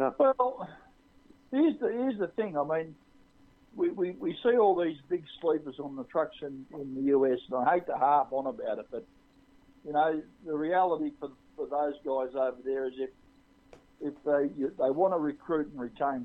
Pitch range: 130-160 Hz